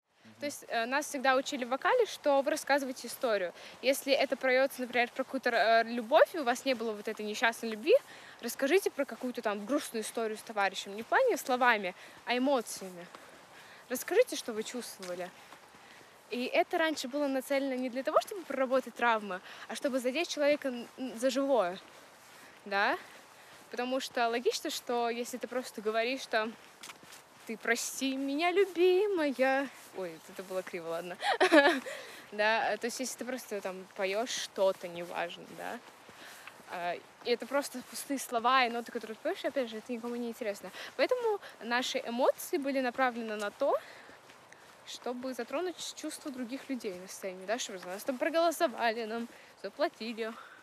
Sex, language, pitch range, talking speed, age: female, Russian, 205-275 Hz, 150 wpm, 20-39